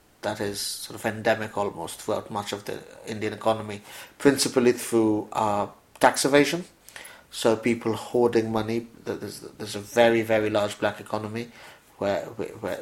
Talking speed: 145 wpm